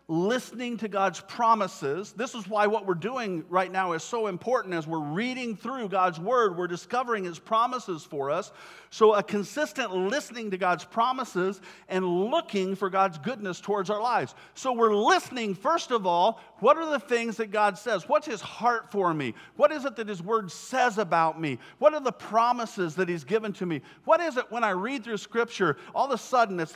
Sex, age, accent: male, 50-69, American